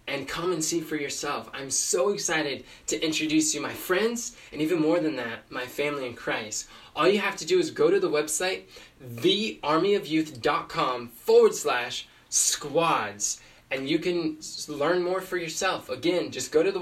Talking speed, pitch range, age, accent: 170 wpm, 150-190 Hz, 20-39, American